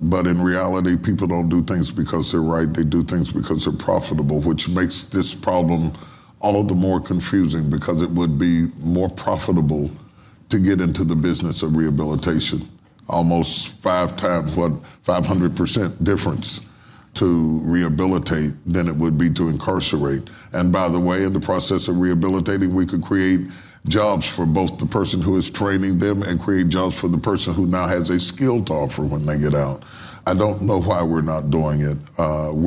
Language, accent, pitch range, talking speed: English, American, 85-95 Hz, 180 wpm